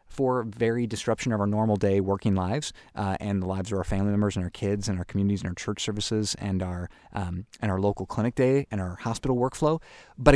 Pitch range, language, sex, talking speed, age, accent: 95-115 Hz, English, male, 230 wpm, 20-39, American